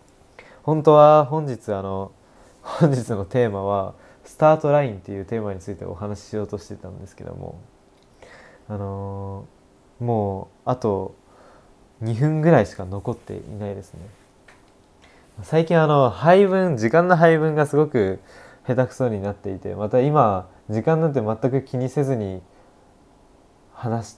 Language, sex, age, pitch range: Japanese, male, 20-39, 100-130 Hz